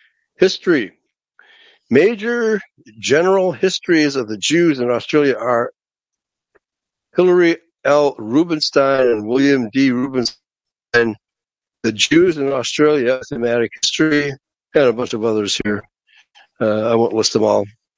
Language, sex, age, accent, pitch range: Chinese, male, 60-79, American, 120-160 Hz